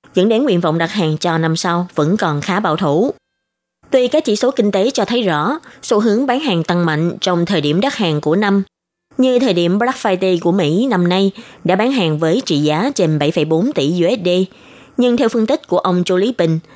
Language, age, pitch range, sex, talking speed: Vietnamese, 20-39, 170-230 Hz, female, 230 wpm